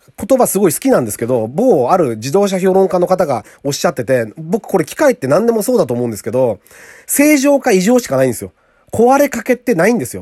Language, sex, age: Japanese, male, 40-59